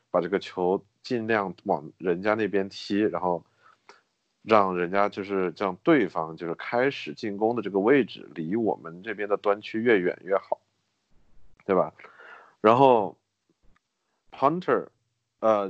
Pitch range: 90-105 Hz